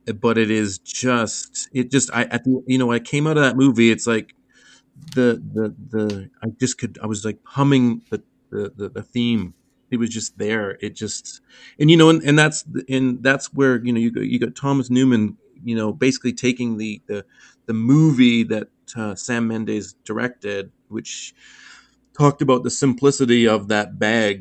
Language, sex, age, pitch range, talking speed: English, male, 30-49, 110-135 Hz, 190 wpm